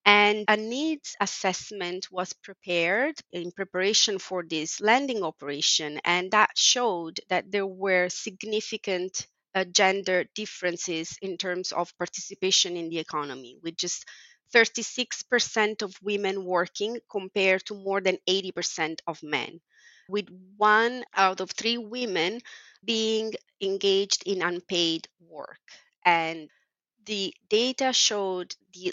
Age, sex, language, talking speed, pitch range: 30-49, female, English, 120 wpm, 170-210 Hz